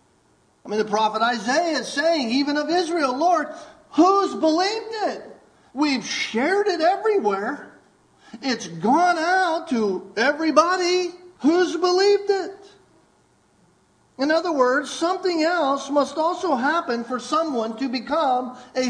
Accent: American